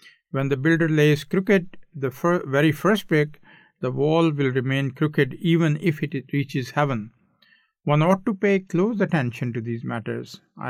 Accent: Indian